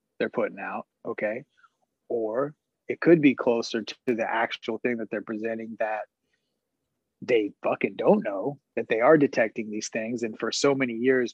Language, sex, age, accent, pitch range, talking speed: English, male, 30-49, American, 110-130 Hz, 170 wpm